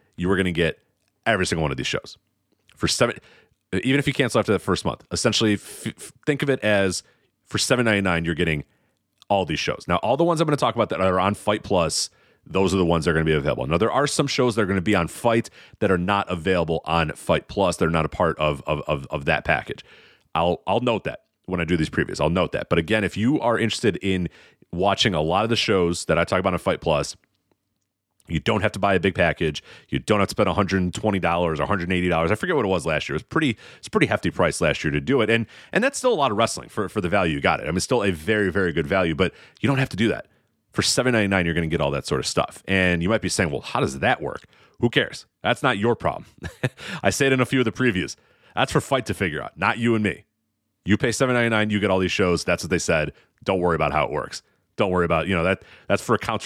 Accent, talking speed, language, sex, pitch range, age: American, 275 wpm, English, male, 85-115 Hz, 30-49